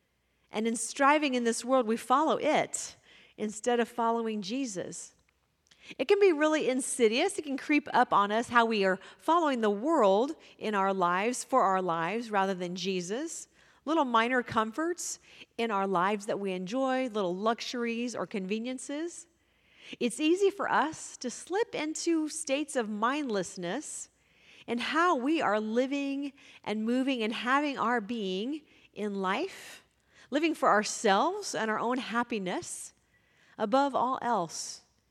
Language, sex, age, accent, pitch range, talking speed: English, female, 40-59, American, 215-280 Hz, 145 wpm